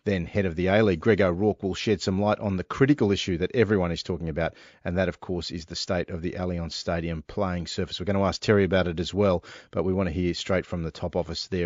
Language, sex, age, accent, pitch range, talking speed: English, male, 40-59, Australian, 90-105 Hz, 275 wpm